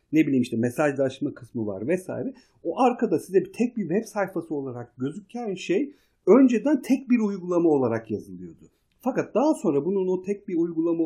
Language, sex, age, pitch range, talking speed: Turkish, male, 50-69, 135-215 Hz, 175 wpm